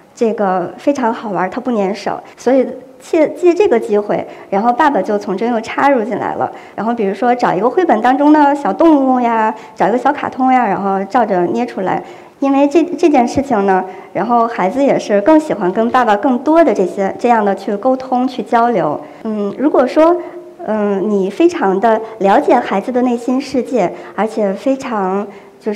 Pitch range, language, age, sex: 205-300 Hz, Chinese, 60-79, male